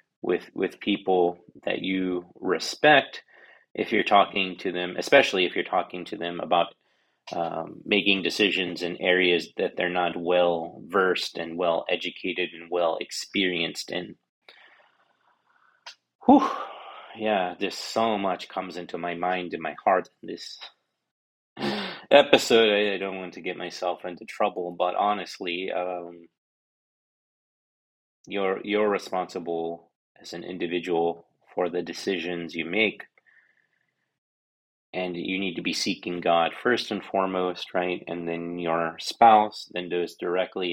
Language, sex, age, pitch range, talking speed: English, male, 30-49, 85-95 Hz, 135 wpm